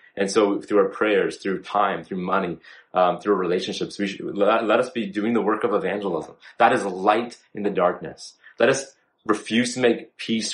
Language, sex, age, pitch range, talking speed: English, male, 30-49, 100-120 Hz, 200 wpm